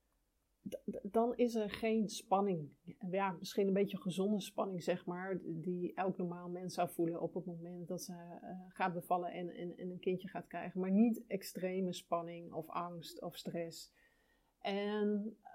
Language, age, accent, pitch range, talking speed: Dutch, 30-49, Dutch, 170-190 Hz, 155 wpm